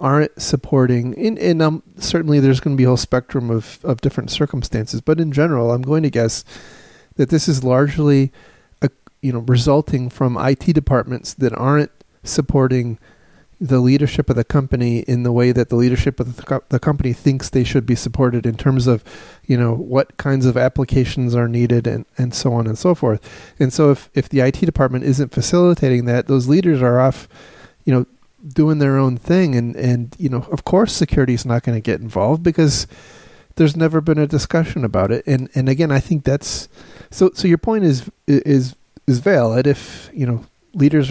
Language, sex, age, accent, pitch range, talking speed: English, male, 30-49, American, 120-150 Hz, 200 wpm